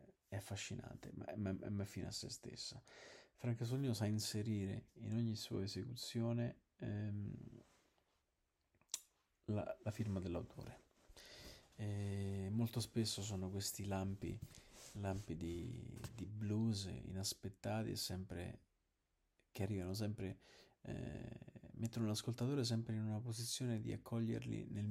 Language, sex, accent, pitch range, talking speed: Italian, male, native, 95-115 Hz, 120 wpm